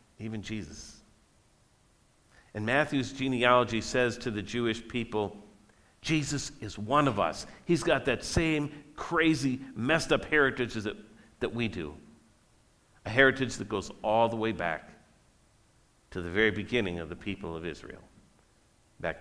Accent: American